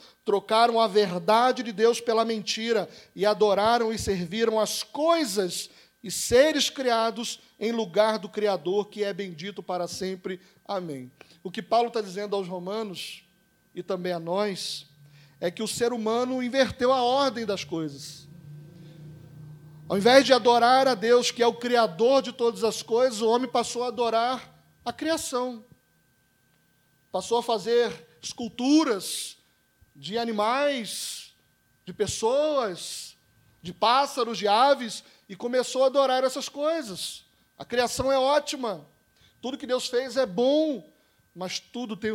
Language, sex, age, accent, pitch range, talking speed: Portuguese, male, 40-59, Brazilian, 190-245 Hz, 140 wpm